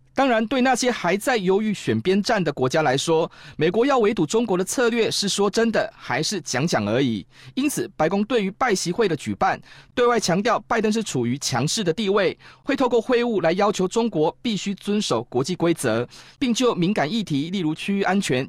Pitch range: 145-220 Hz